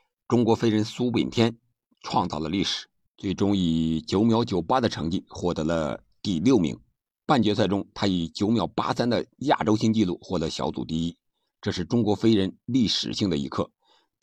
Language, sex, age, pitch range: Chinese, male, 50-69, 85-115 Hz